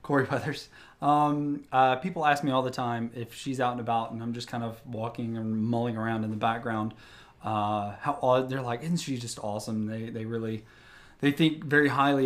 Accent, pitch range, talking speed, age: American, 115-140 Hz, 210 wpm, 20-39